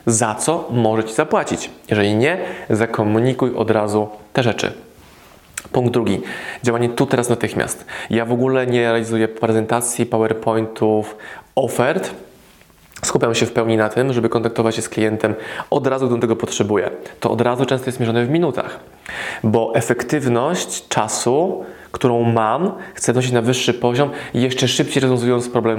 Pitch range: 110-130 Hz